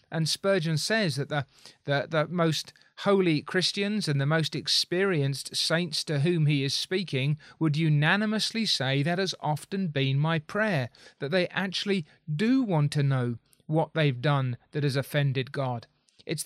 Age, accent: 30-49, British